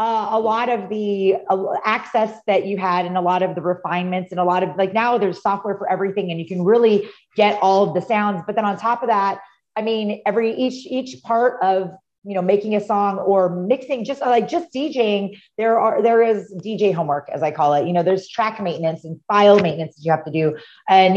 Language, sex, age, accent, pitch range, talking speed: English, female, 30-49, American, 185-235 Hz, 230 wpm